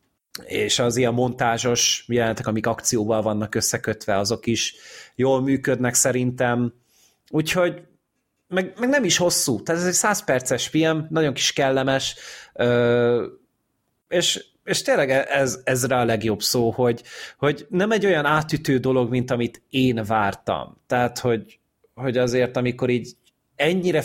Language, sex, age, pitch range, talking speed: Hungarian, male, 30-49, 110-135 Hz, 130 wpm